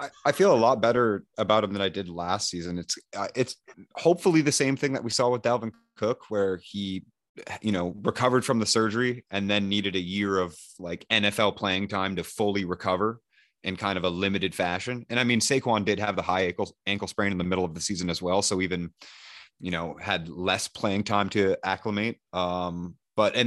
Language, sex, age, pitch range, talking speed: English, male, 30-49, 90-105 Hz, 215 wpm